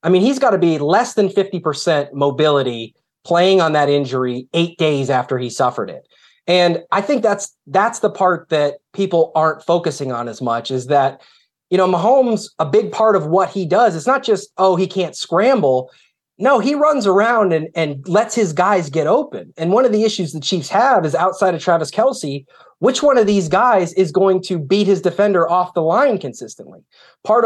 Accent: American